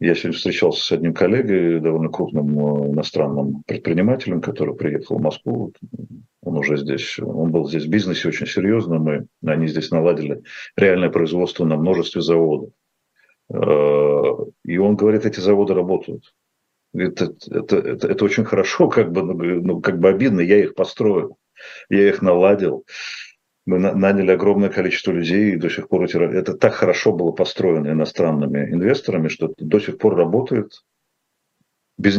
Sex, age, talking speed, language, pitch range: male, 50-69, 145 wpm, Russian, 75-95 Hz